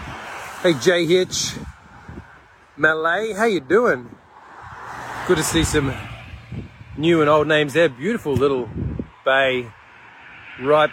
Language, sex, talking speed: English, male, 110 wpm